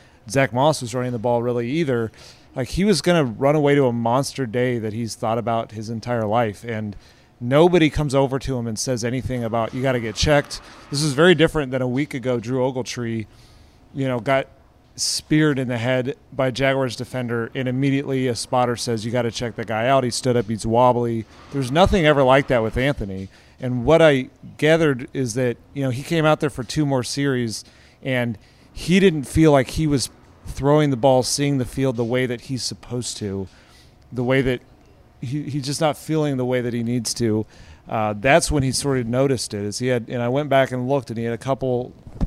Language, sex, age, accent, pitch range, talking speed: English, male, 30-49, American, 120-140 Hz, 220 wpm